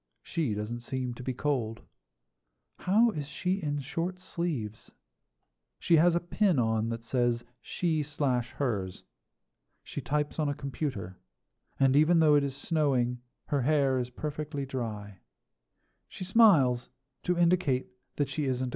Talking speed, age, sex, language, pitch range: 145 wpm, 40-59, male, English, 115-150 Hz